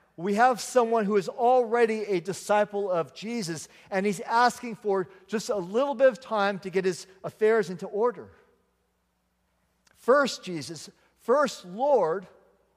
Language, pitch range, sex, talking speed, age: English, 160-215 Hz, male, 140 wpm, 50-69